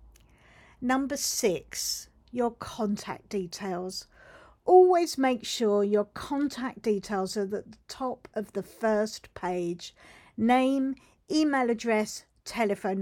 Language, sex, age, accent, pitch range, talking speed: English, female, 50-69, British, 190-250 Hz, 105 wpm